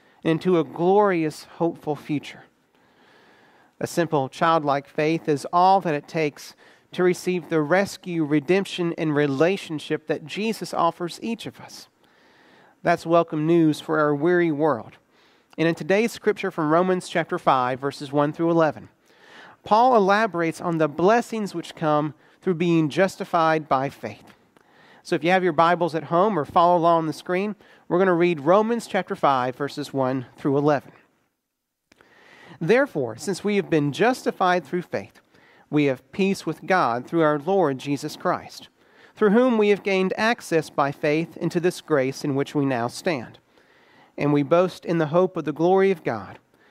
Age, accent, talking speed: 40-59, American, 165 wpm